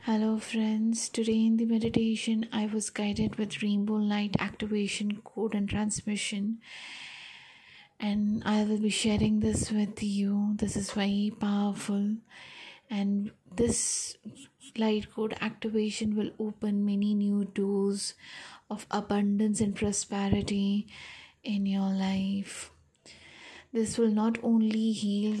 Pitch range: 200-215 Hz